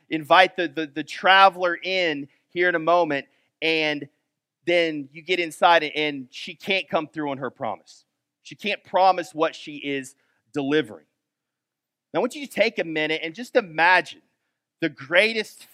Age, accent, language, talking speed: 30-49, American, English, 165 wpm